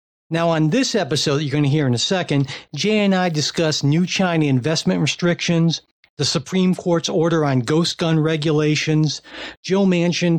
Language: English